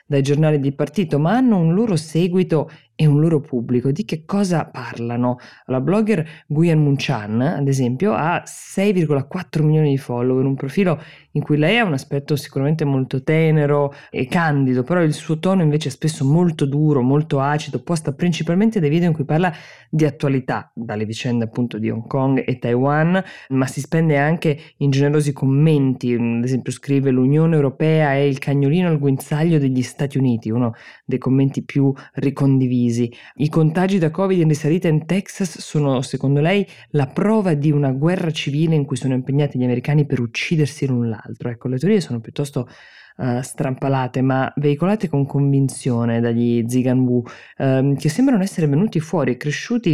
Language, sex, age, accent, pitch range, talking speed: Italian, female, 20-39, native, 130-160 Hz, 170 wpm